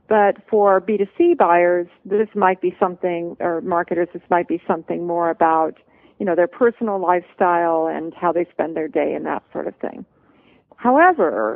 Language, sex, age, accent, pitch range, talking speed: English, female, 50-69, American, 175-220 Hz, 170 wpm